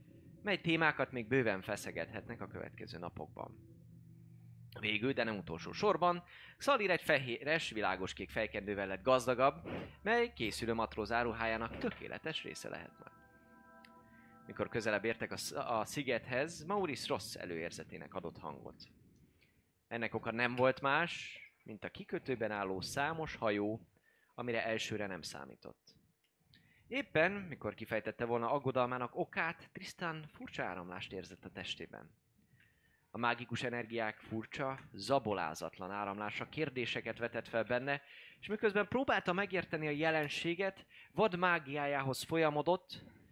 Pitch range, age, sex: 110-155 Hz, 20-39, male